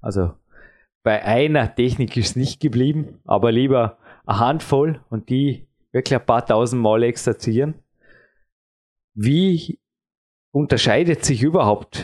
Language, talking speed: German, 120 wpm